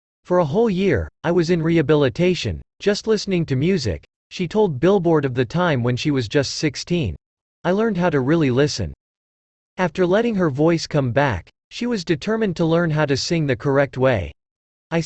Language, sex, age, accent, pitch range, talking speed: English, male, 40-59, American, 130-180 Hz, 185 wpm